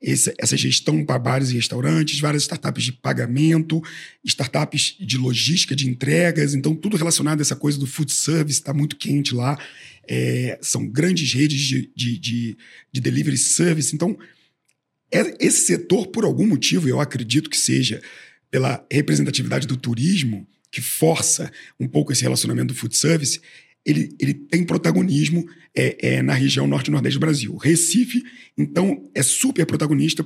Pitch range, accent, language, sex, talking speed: 120-160 Hz, Brazilian, Portuguese, male, 145 wpm